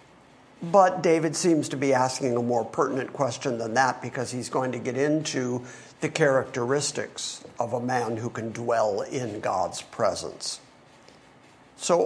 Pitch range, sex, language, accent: 130-165 Hz, male, English, American